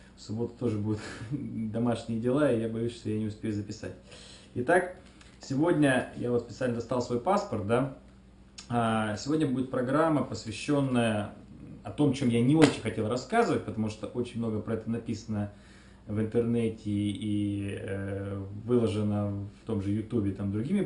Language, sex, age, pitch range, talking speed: Russian, male, 20-39, 100-120 Hz, 145 wpm